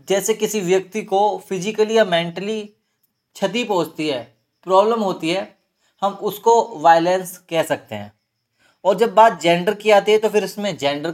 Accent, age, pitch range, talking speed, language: native, 20-39, 150-200 Hz, 160 wpm, Hindi